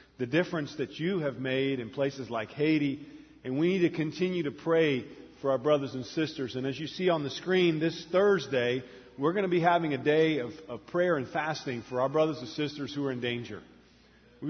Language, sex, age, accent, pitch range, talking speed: English, male, 40-59, American, 140-180 Hz, 220 wpm